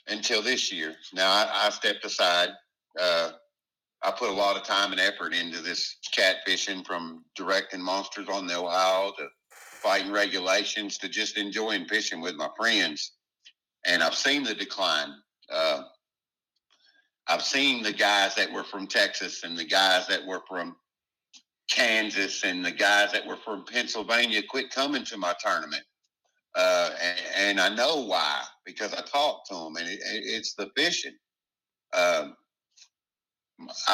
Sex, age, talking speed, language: male, 50-69, 155 wpm, English